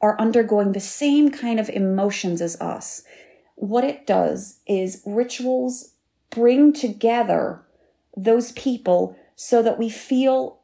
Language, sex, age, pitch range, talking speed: English, female, 30-49, 195-260 Hz, 125 wpm